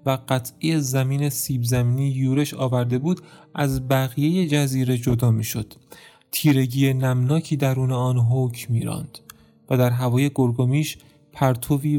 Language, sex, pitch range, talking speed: Persian, male, 130-150 Hz, 125 wpm